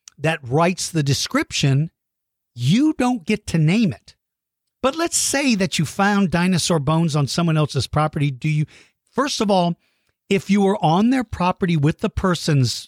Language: English